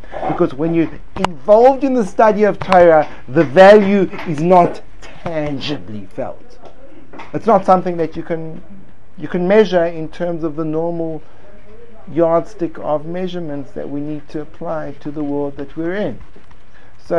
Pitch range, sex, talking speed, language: 120-170 Hz, male, 155 wpm, English